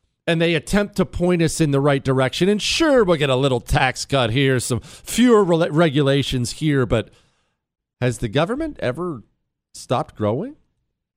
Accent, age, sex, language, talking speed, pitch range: American, 40-59, male, English, 165 wpm, 115-175 Hz